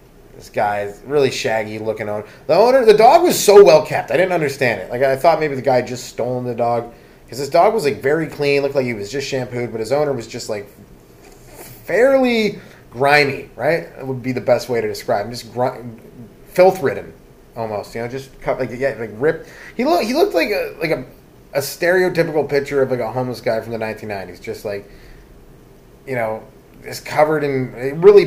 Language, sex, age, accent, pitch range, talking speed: English, male, 20-39, American, 110-145 Hz, 215 wpm